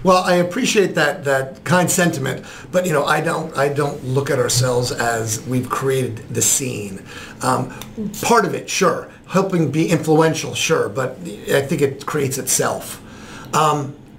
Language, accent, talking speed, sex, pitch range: English, American, 160 wpm, male, 135-165 Hz